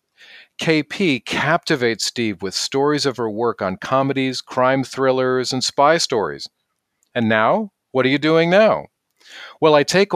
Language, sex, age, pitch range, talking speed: English, male, 40-59, 120-165 Hz, 150 wpm